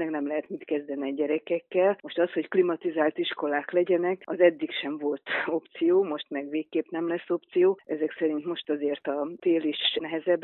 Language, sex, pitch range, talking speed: Hungarian, female, 145-175 Hz, 180 wpm